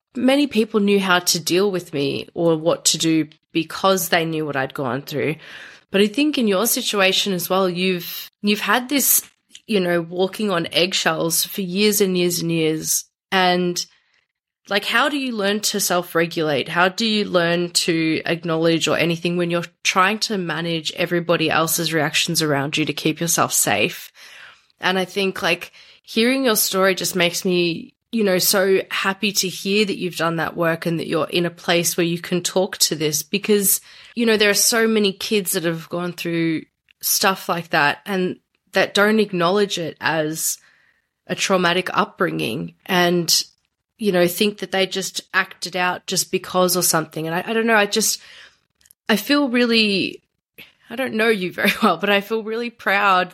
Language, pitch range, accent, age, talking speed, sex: English, 170-205 Hz, Australian, 20-39, 185 wpm, female